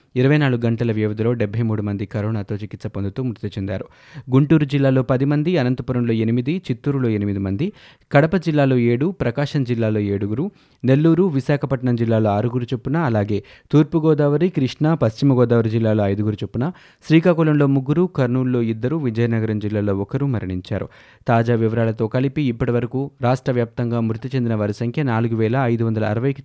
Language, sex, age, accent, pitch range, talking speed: Telugu, male, 30-49, native, 115-145 Hz, 130 wpm